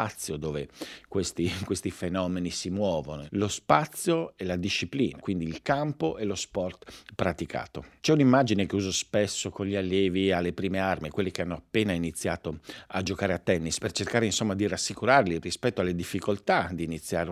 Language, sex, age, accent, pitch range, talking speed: Italian, male, 50-69, native, 85-115 Hz, 165 wpm